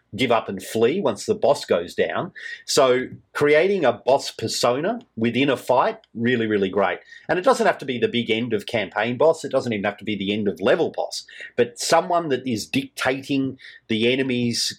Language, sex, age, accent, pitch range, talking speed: English, male, 40-59, Australian, 105-135 Hz, 205 wpm